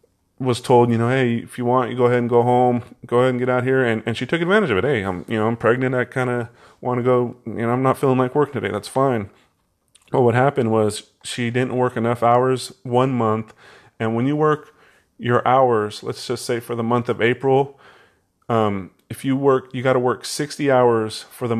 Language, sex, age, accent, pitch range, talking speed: English, male, 30-49, American, 105-125 Hz, 230 wpm